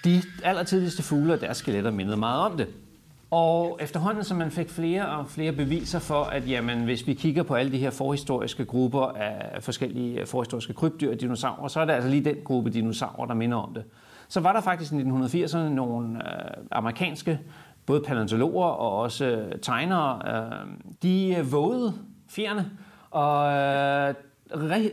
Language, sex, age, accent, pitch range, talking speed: Danish, male, 40-59, native, 120-165 Hz, 165 wpm